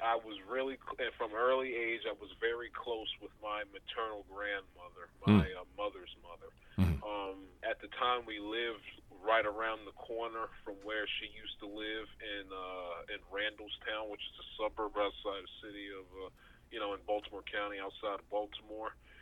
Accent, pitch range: American, 95-110 Hz